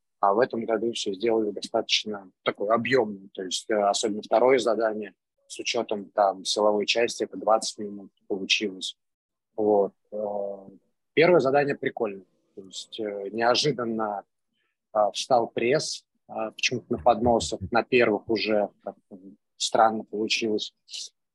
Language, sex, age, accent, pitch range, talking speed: Russian, male, 20-39, native, 105-125 Hz, 120 wpm